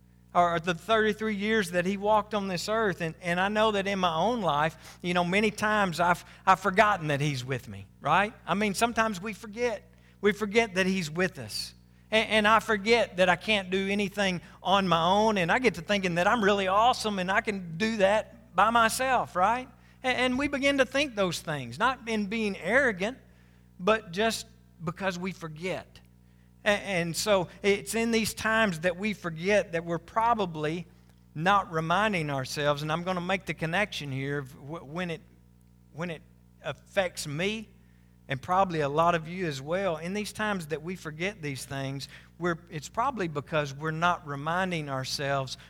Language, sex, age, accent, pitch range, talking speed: English, male, 50-69, American, 140-205 Hz, 185 wpm